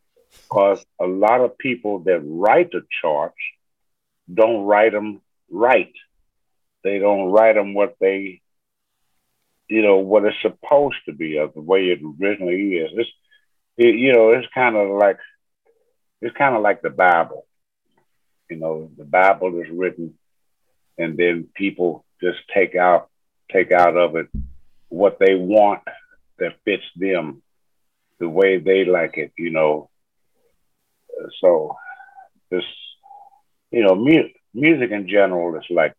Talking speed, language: 140 wpm, English